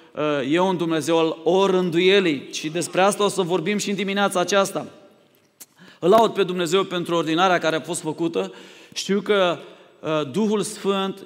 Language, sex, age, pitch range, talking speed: Romanian, male, 30-49, 170-200 Hz, 155 wpm